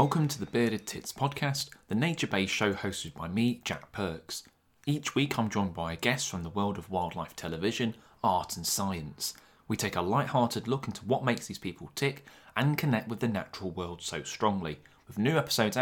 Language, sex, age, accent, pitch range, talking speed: English, male, 30-49, British, 90-130 Hz, 195 wpm